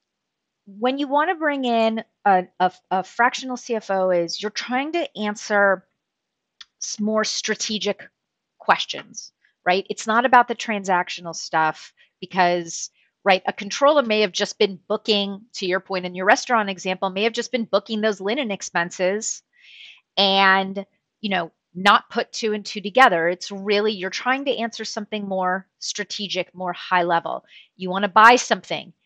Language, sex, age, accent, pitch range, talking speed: English, female, 30-49, American, 185-225 Hz, 155 wpm